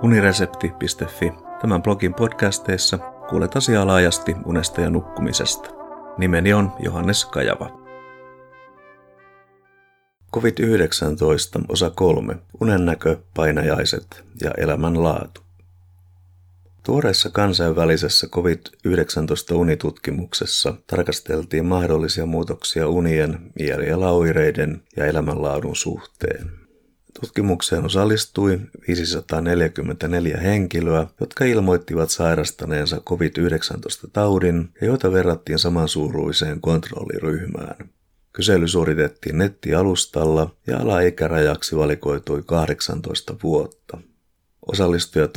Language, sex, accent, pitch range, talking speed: Finnish, male, native, 80-95 Hz, 75 wpm